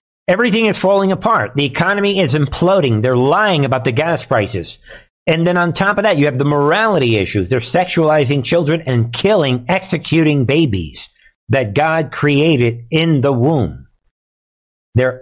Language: English